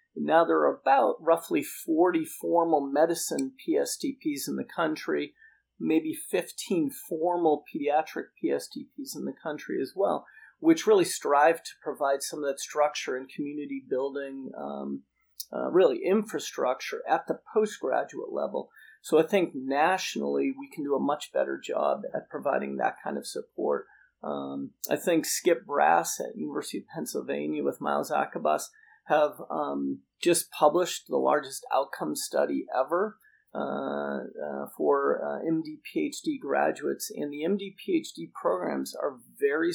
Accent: American